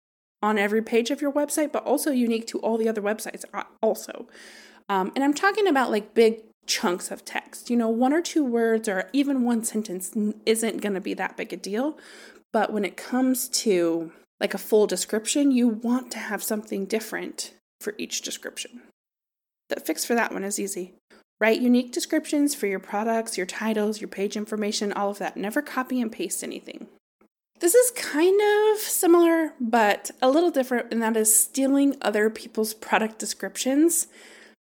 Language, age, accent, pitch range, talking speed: English, 20-39, American, 210-265 Hz, 180 wpm